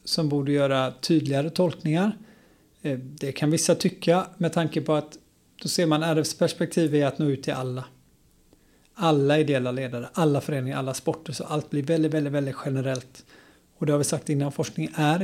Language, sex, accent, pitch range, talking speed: Swedish, male, native, 140-165 Hz, 180 wpm